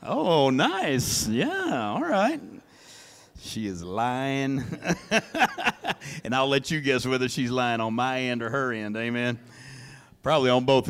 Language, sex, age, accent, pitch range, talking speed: English, male, 50-69, American, 120-160 Hz, 145 wpm